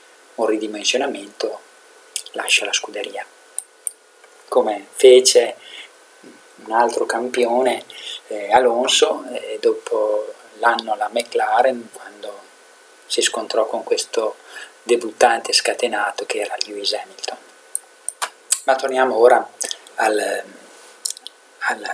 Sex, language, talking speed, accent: male, Italian, 90 wpm, native